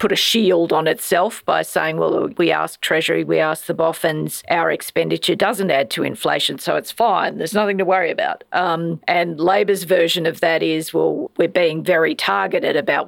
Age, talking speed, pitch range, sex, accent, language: 40-59, 195 wpm, 165-210 Hz, female, Australian, English